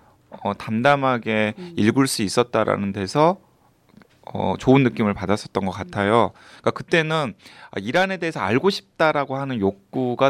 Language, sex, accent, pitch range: Korean, male, native, 110-150 Hz